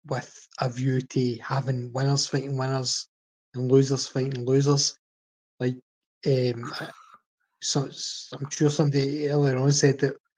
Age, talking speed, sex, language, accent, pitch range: 20-39, 135 wpm, male, English, British, 130-145 Hz